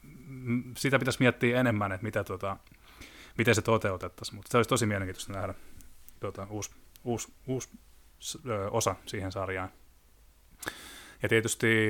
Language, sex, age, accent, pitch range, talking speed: Finnish, male, 20-39, native, 95-115 Hz, 130 wpm